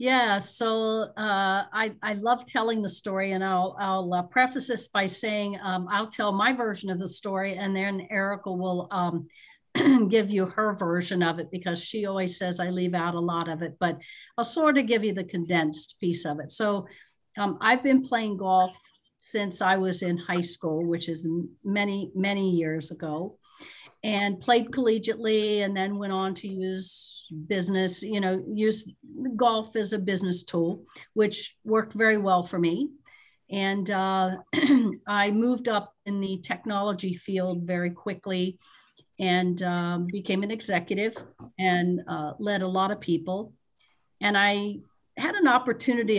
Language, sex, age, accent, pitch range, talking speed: English, female, 50-69, American, 180-215 Hz, 165 wpm